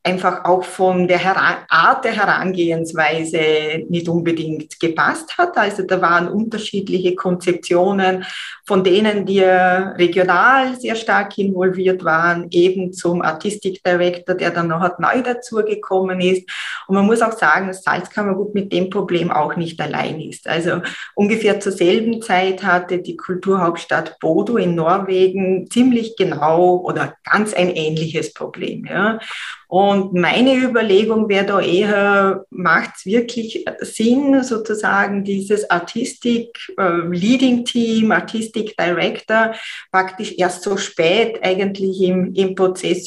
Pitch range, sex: 180-210 Hz, female